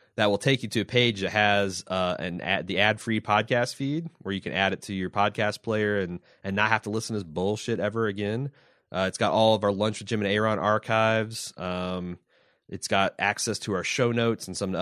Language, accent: English, American